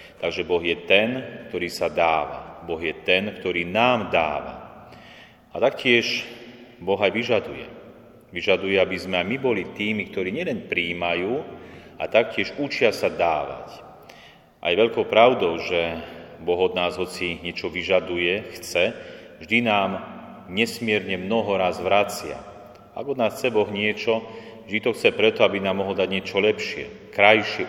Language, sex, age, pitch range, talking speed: Slovak, male, 30-49, 95-120 Hz, 145 wpm